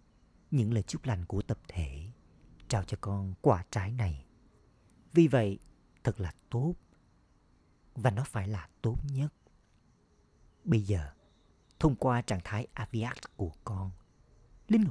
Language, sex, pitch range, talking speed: Vietnamese, male, 90-120 Hz, 135 wpm